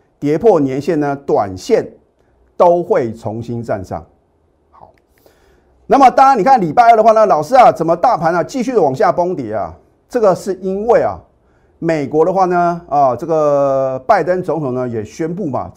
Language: Chinese